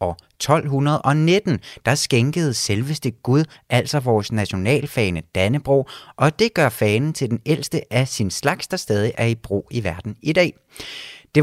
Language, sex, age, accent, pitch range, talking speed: Danish, male, 30-49, native, 110-150 Hz, 160 wpm